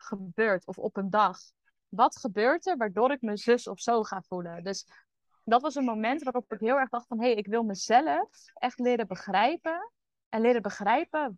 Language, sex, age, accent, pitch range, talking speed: Dutch, female, 20-39, Dutch, 200-245 Hz, 200 wpm